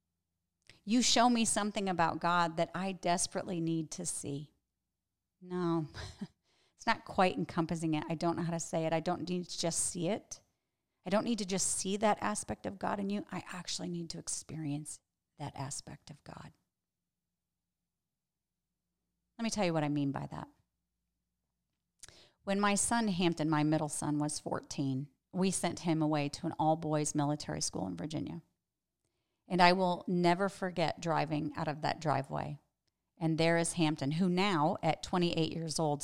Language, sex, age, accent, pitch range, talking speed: English, female, 40-59, American, 145-180 Hz, 170 wpm